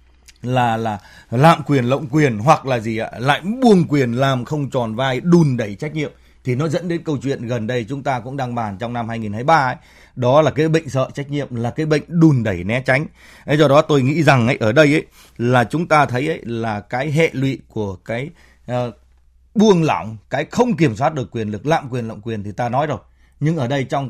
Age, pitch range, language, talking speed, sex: 20-39, 115-160 Hz, Vietnamese, 240 wpm, male